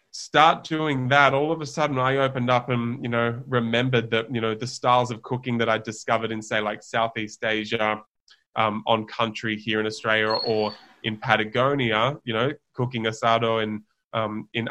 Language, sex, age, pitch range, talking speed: English, male, 20-39, 115-135 Hz, 185 wpm